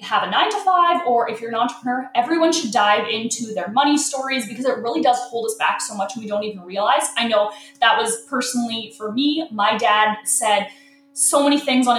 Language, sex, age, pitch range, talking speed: English, female, 20-39, 230-310 Hz, 220 wpm